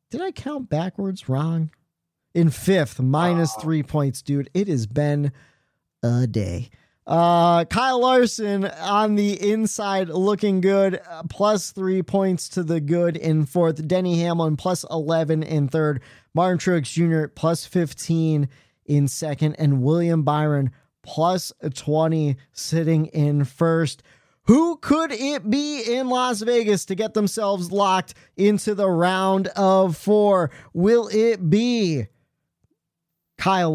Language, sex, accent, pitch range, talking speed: English, male, American, 150-205 Hz, 130 wpm